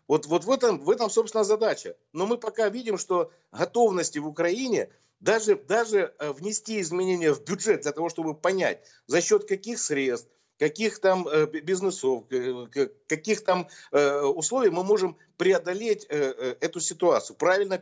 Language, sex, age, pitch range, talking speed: Russian, male, 50-69, 160-225 Hz, 140 wpm